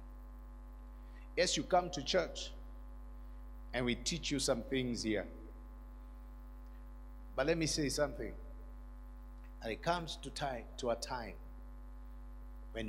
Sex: male